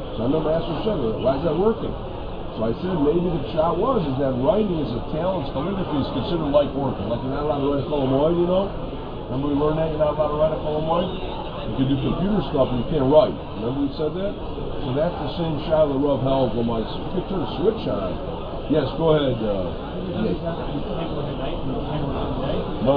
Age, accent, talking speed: 50-69, American, 225 wpm